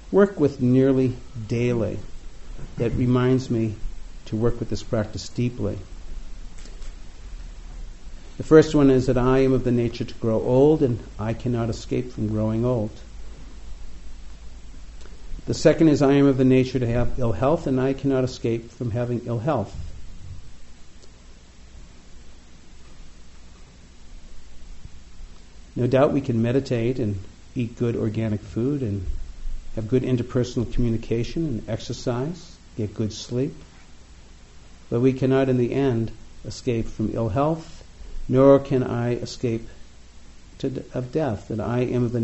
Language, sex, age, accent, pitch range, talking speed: English, male, 50-69, American, 85-130 Hz, 135 wpm